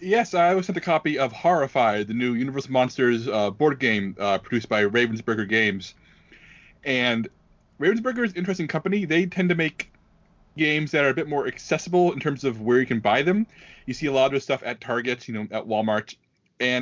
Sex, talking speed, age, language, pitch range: male, 210 wpm, 30-49, English, 115-160 Hz